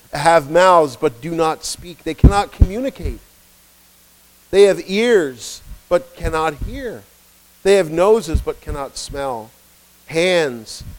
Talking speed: 120 wpm